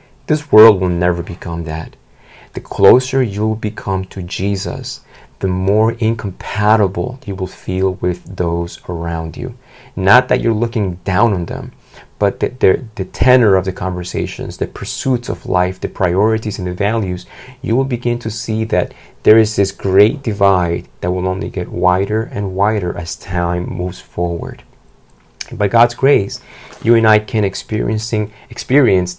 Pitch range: 90-115 Hz